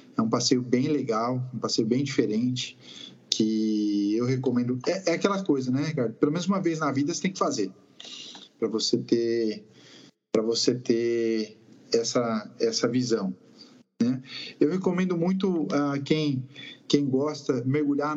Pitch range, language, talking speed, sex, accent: 130-170 Hz, Portuguese, 150 wpm, male, Brazilian